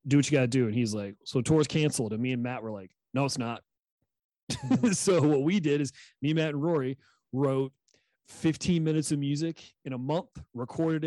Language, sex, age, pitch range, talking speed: English, male, 30-49, 120-150 Hz, 205 wpm